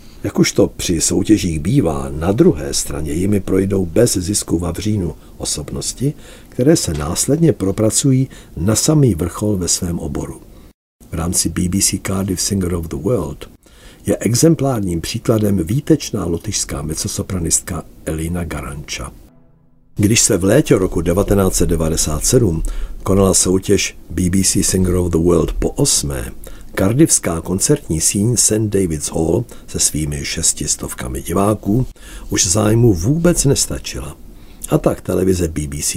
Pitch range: 85-110 Hz